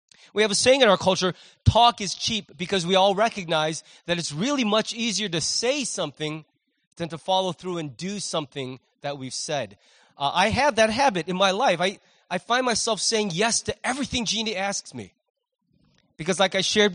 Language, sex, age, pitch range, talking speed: English, male, 30-49, 170-225 Hz, 195 wpm